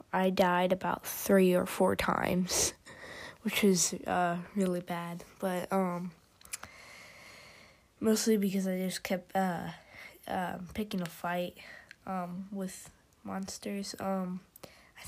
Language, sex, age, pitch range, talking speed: English, female, 20-39, 185-215 Hz, 120 wpm